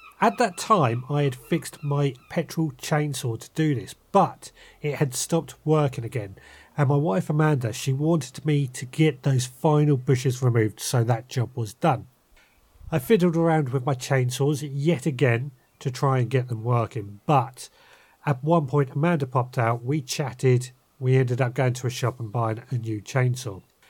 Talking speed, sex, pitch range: 180 wpm, male, 125-165 Hz